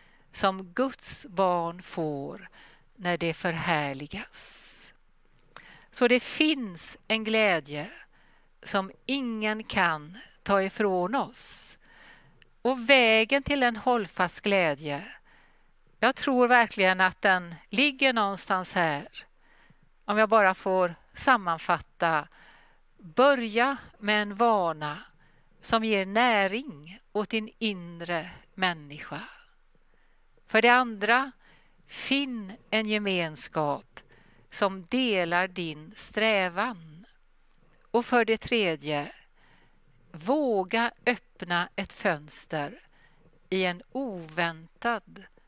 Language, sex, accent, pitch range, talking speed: Swedish, female, native, 180-240 Hz, 90 wpm